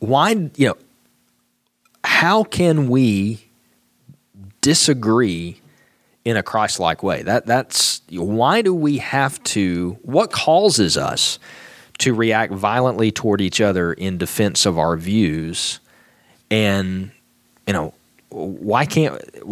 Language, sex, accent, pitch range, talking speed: English, male, American, 95-120 Hz, 115 wpm